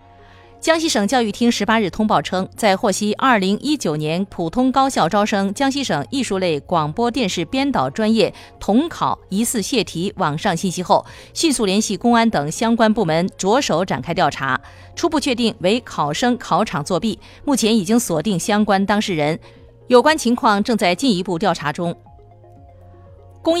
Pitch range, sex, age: 170-235 Hz, female, 30-49